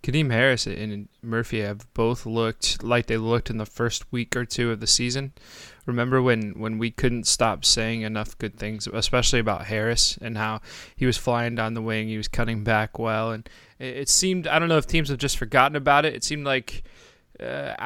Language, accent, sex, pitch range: English, American, male, 110-125 Hz